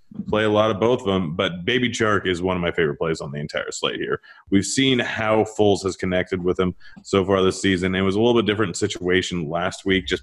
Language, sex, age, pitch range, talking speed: English, male, 30-49, 90-105 Hz, 250 wpm